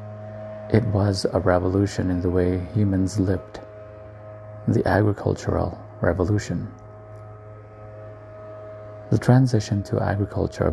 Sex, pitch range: male, 95-105 Hz